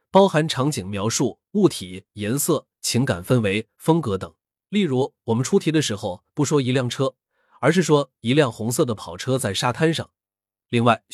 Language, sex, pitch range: Chinese, male, 105-155 Hz